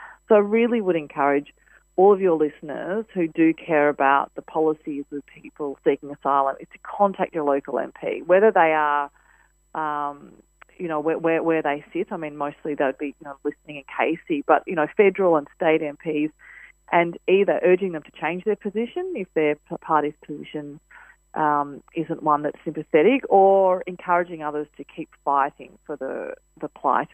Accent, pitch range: Australian, 145-175 Hz